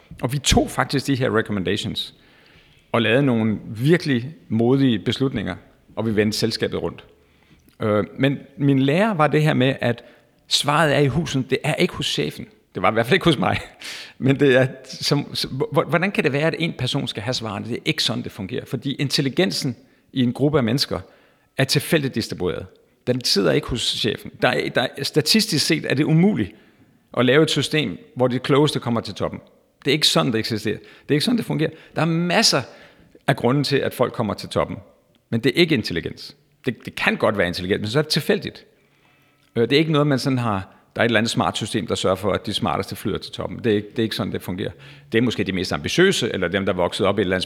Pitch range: 115-150 Hz